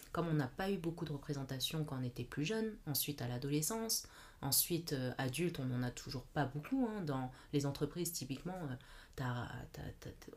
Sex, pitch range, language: female, 140-170 Hz, French